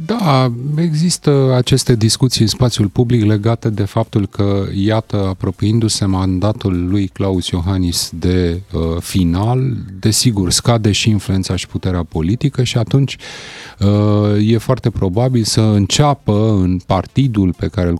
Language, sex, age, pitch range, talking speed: Romanian, male, 30-49, 90-135 Hz, 135 wpm